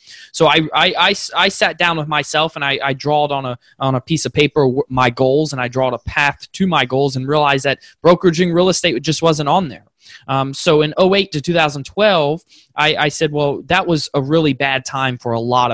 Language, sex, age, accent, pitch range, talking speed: English, male, 20-39, American, 125-150 Hz, 230 wpm